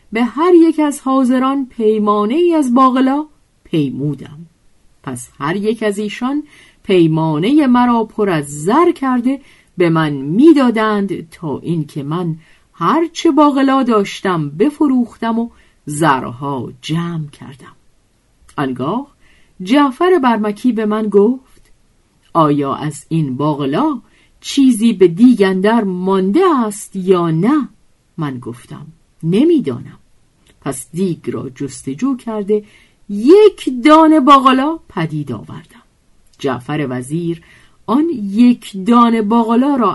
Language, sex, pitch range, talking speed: Persian, female, 160-250 Hz, 110 wpm